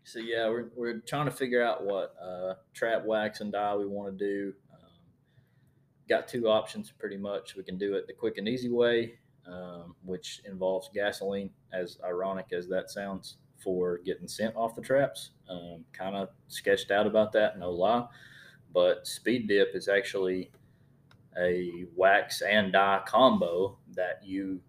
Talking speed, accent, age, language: 170 wpm, American, 20-39, English